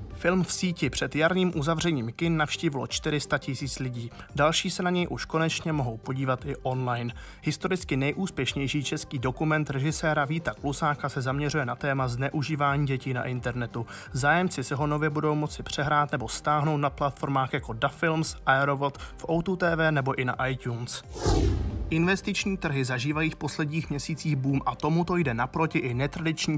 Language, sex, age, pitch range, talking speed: Czech, male, 20-39, 130-160 Hz, 160 wpm